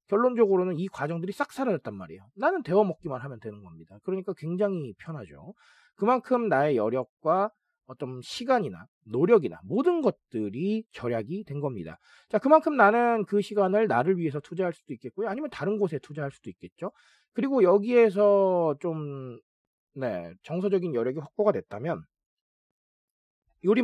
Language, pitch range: Korean, 140-210 Hz